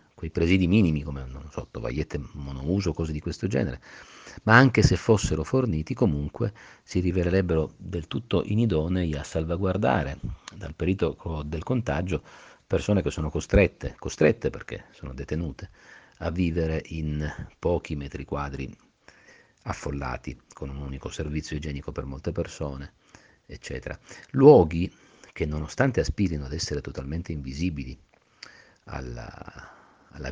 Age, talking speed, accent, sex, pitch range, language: 50-69, 125 wpm, native, male, 75-95 Hz, Italian